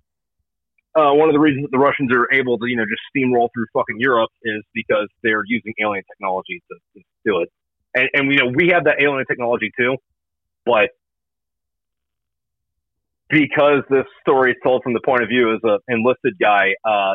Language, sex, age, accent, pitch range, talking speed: English, male, 30-49, American, 105-130 Hz, 190 wpm